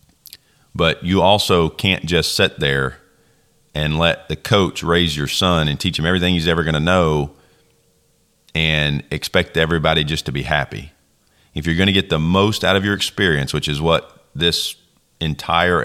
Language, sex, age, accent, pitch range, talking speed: English, male, 40-59, American, 75-90 Hz, 175 wpm